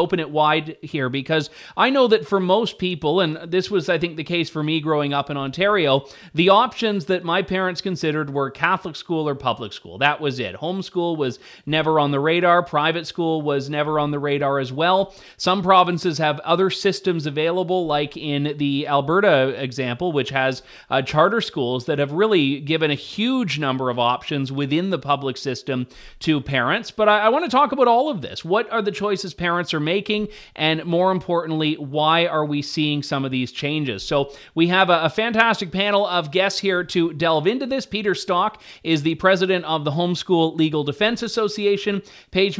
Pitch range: 150-190 Hz